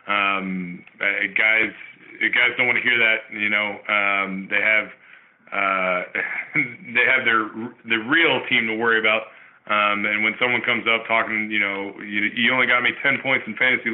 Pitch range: 100-115 Hz